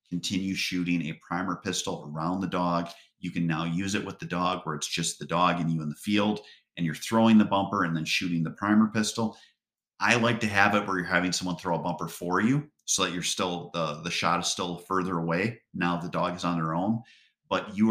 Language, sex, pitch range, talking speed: English, male, 85-105 Hz, 240 wpm